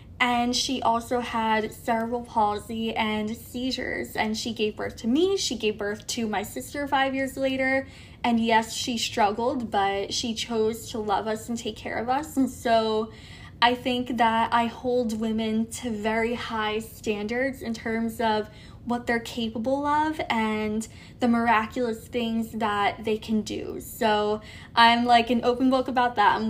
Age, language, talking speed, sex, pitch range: 10-29, English, 170 wpm, female, 220-250 Hz